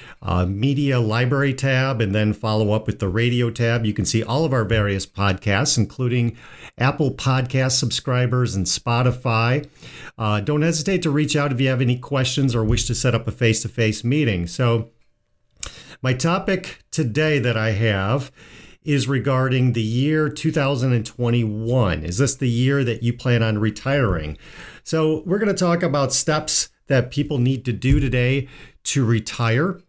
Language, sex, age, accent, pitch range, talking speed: English, male, 50-69, American, 110-140 Hz, 165 wpm